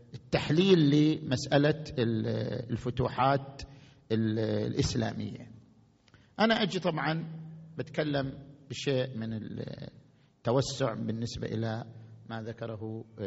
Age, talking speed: 50-69, 70 wpm